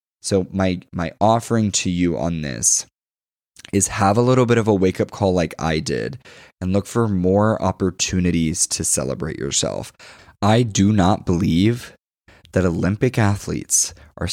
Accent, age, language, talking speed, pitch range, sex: American, 20-39, English, 150 wpm, 85-105 Hz, male